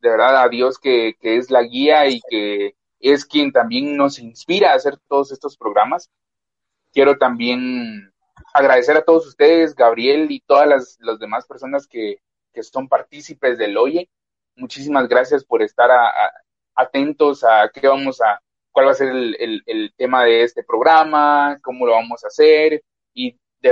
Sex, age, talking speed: male, 30-49, 165 wpm